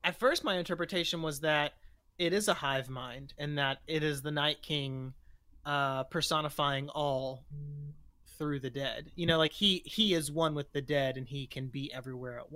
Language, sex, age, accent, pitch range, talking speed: English, male, 30-49, American, 130-155 Hz, 190 wpm